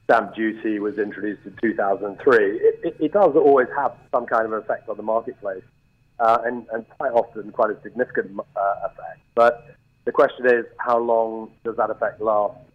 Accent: British